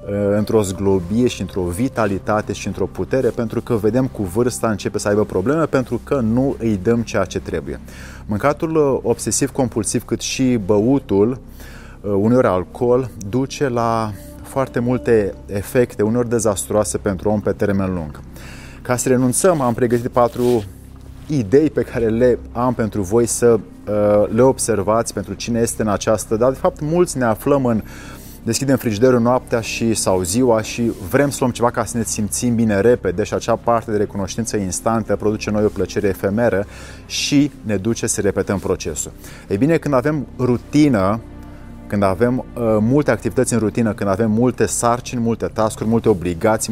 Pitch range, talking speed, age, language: 100-125 Hz, 160 wpm, 30-49, Romanian